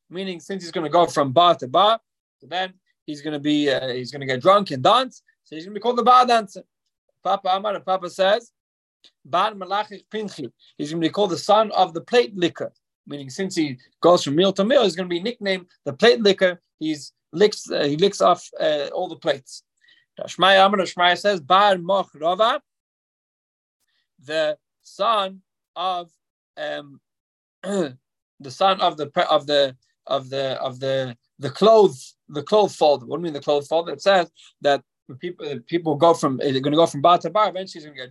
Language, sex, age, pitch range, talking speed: English, male, 30-49, 145-195 Hz, 200 wpm